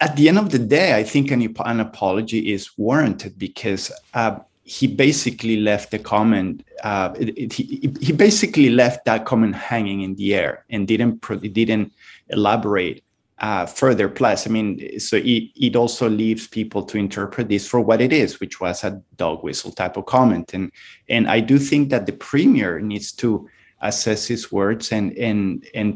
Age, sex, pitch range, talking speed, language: 30-49, male, 95-115 Hz, 180 wpm, English